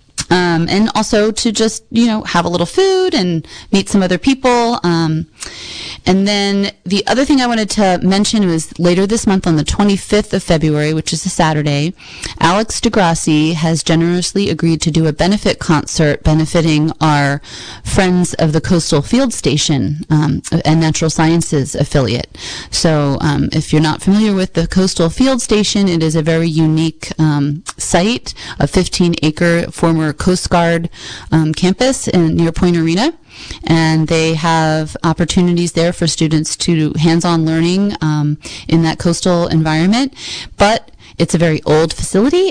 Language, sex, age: English, female, 30-49